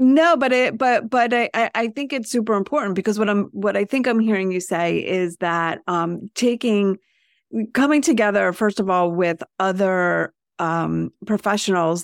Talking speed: 170 wpm